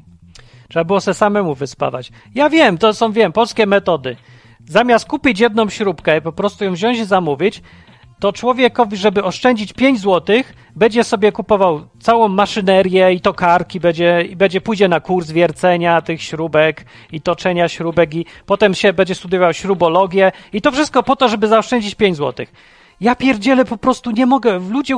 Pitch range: 155-230 Hz